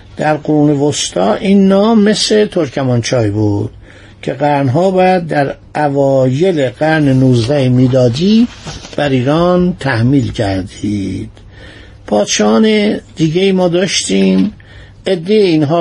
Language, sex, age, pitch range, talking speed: Persian, male, 60-79, 105-175 Hz, 105 wpm